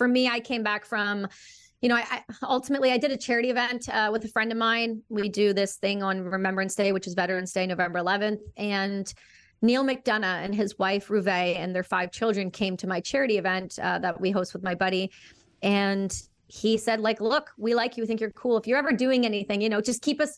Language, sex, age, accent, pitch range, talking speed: English, female, 30-49, American, 195-230 Hz, 230 wpm